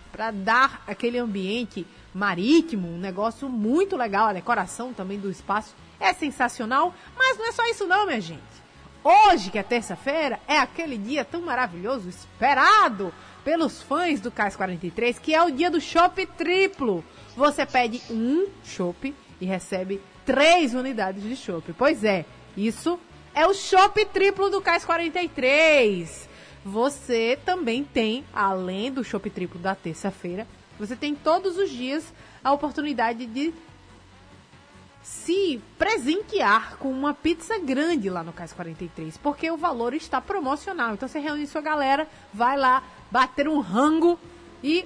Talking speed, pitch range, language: 145 wpm, 210-320 Hz, Portuguese